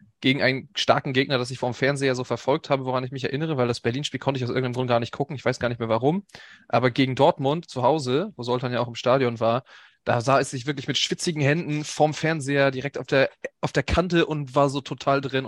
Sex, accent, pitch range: male, German, 130-155 Hz